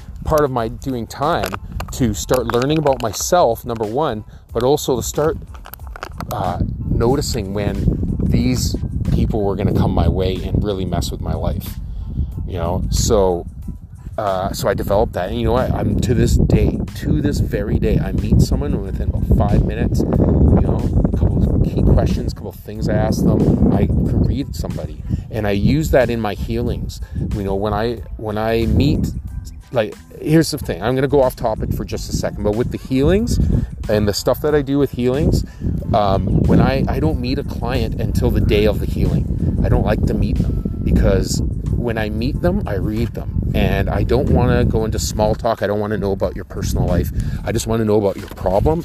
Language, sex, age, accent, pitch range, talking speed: English, male, 30-49, American, 90-115 Hz, 210 wpm